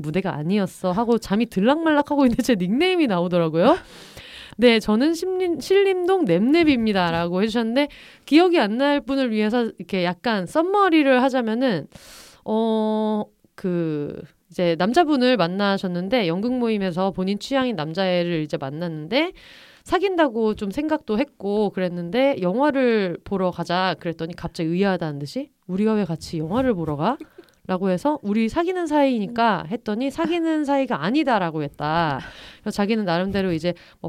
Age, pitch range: 30-49, 180-270 Hz